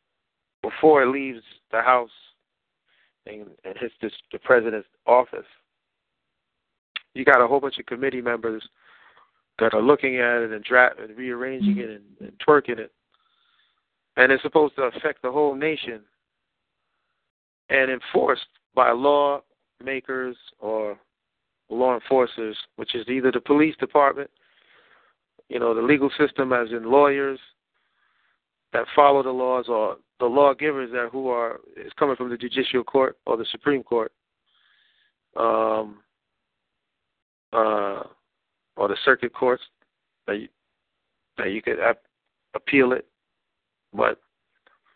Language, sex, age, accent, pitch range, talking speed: English, male, 40-59, American, 120-150 Hz, 125 wpm